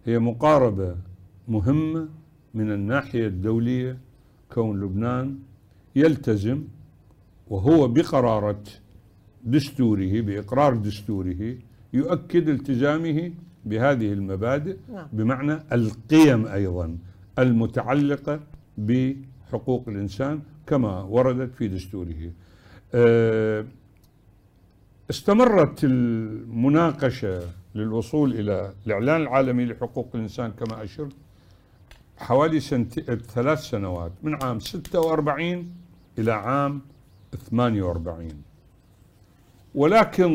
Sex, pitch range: male, 100-145 Hz